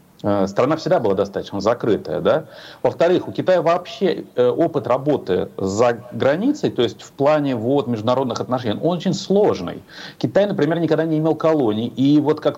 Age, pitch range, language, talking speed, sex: 40-59, 120-155 Hz, Russian, 150 wpm, male